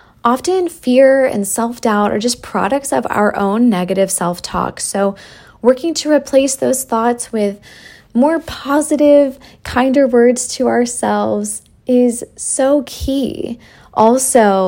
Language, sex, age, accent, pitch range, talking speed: English, female, 20-39, American, 205-255 Hz, 120 wpm